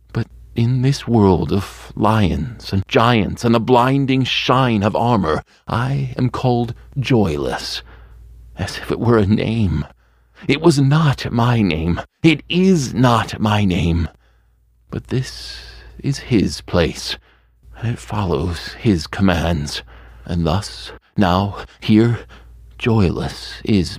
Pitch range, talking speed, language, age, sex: 90-120 Hz, 125 wpm, English, 40-59, male